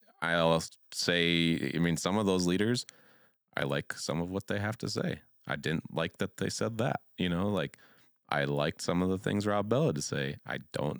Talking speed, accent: 215 wpm, American